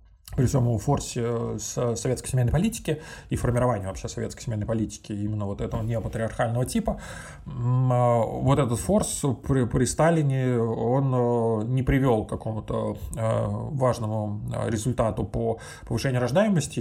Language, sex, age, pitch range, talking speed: Russian, male, 20-39, 110-135 Hz, 120 wpm